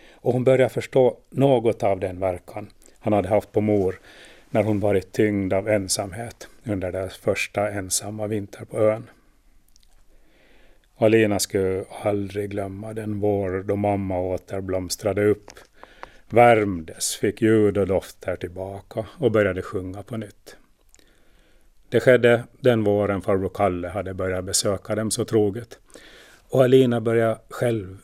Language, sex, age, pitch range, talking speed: Swedish, male, 30-49, 95-120 Hz, 140 wpm